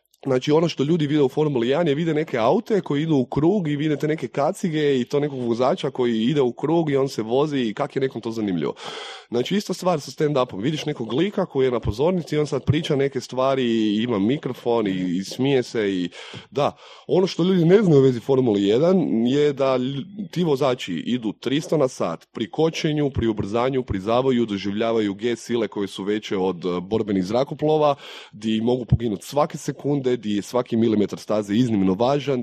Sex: male